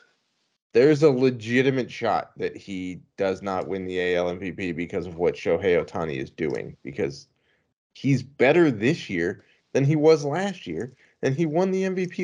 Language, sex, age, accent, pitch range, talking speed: English, male, 20-39, American, 100-140 Hz, 165 wpm